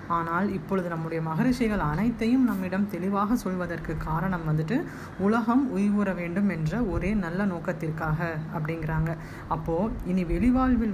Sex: female